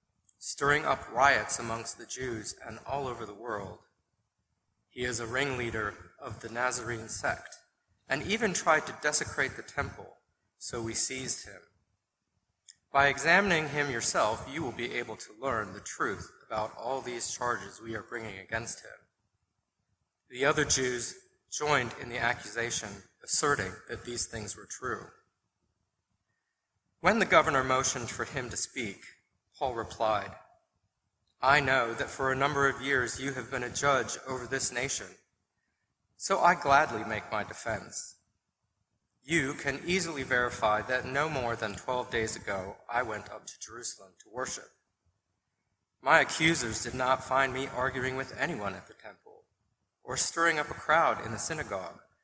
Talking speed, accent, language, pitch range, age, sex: 155 wpm, American, English, 105-135 Hz, 30-49, male